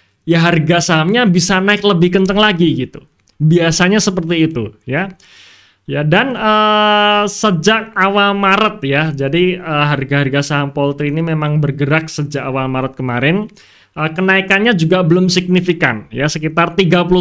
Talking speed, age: 135 wpm, 20-39